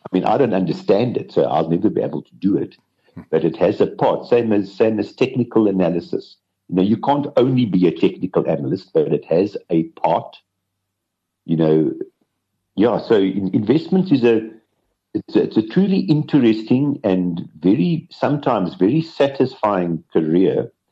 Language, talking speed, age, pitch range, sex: English, 170 wpm, 60-79, 95-140 Hz, male